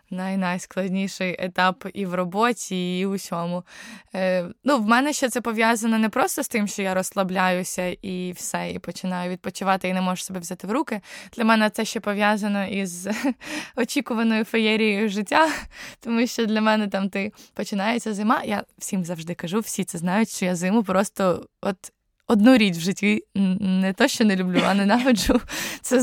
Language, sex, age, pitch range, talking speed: Ukrainian, female, 20-39, 190-235 Hz, 170 wpm